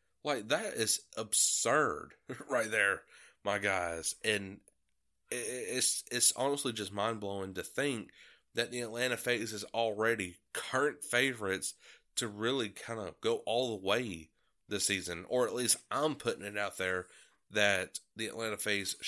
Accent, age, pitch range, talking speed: American, 30-49, 115-150 Hz, 145 wpm